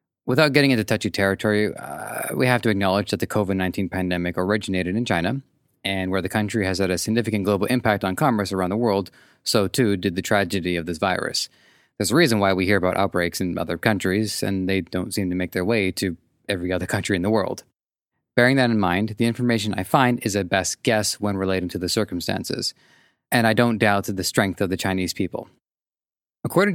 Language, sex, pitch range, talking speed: English, male, 95-115 Hz, 210 wpm